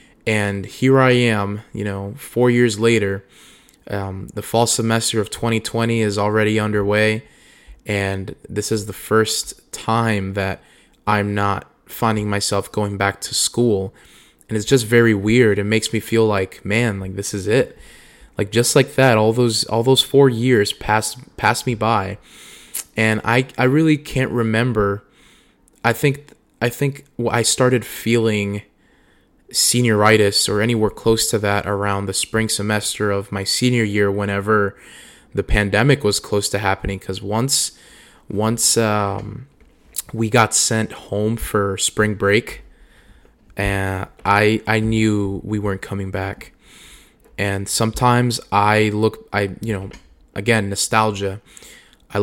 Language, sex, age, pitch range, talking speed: English, male, 20-39, 100-115 Hz, 145 wpm